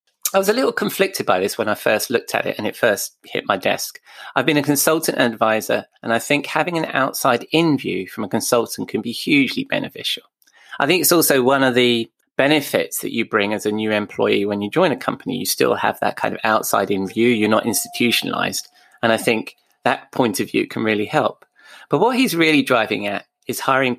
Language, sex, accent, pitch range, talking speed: English, male, British, 110-145 Hz, 225 wpm